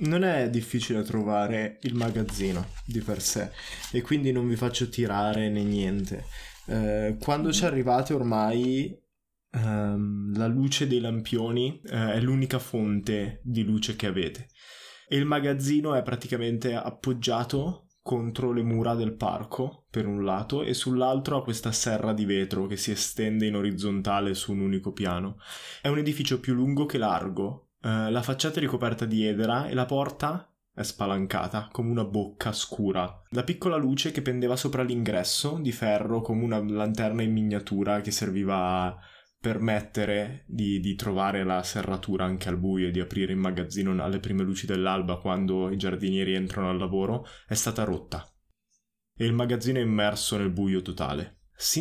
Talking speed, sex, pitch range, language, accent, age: 165 wpm, male, 100-125 Hz, Italian, native, 20-39